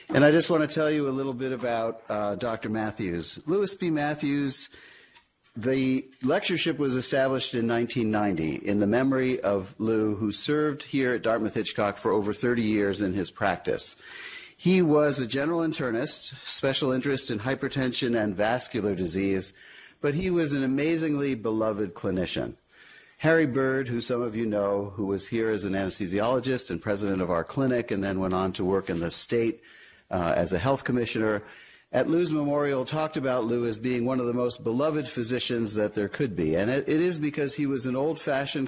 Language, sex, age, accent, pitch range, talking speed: English, male, 50-69, American, 100-135 Hz, 180 wpm